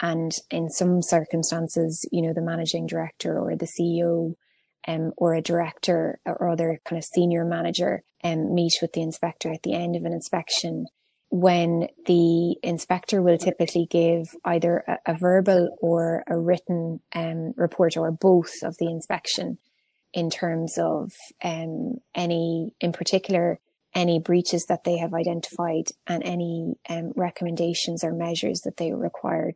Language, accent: English, Irish